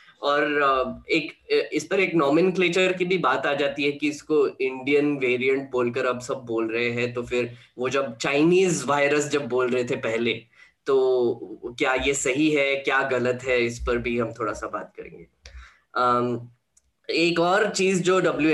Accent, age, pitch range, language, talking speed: native, 10-29, 120-150 Hz, Hindi, 180 wpm